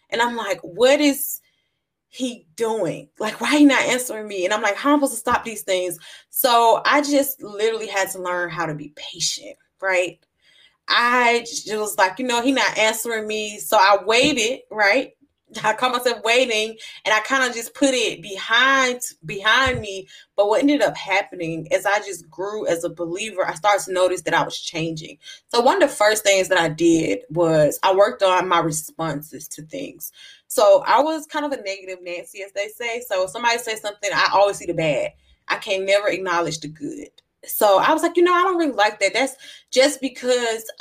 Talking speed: 210 wpm